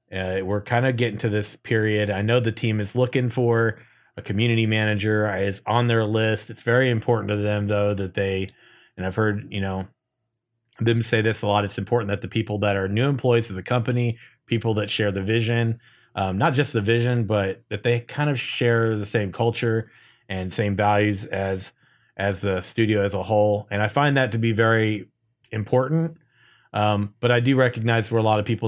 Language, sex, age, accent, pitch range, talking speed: English, male, 30-49, American, 100-115 Hz, 205 wpm